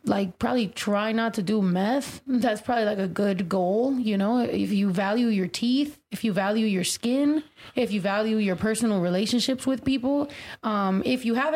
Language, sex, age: English, female, 20-39